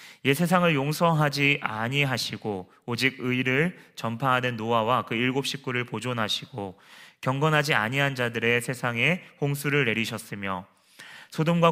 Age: 30-49